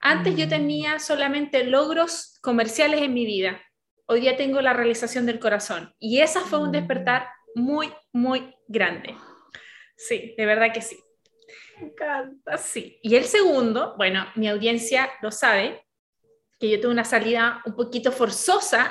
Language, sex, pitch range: Spanish, female, 235-310 Hz